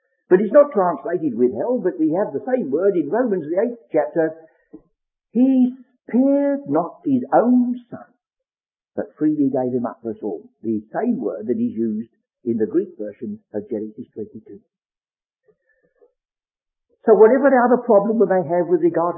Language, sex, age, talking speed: English, male, 60-79, 170 wpm